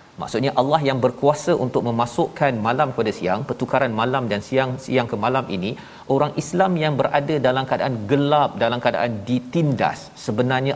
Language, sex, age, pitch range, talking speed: Malayalam, male, 40-59, 115-140 Hz, 155 wpm